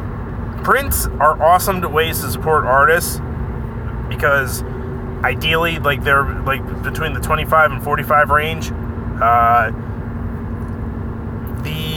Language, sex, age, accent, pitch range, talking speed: English, male, 30-49, American, 105-140 Hz, 100 wpm